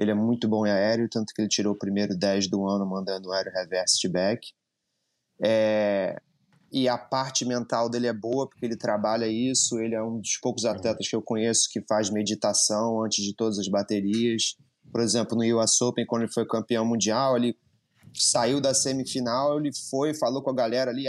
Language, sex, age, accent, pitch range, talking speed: Portuguese, male, 20-39, Brazilian, 110-130 Hz, 205 wpm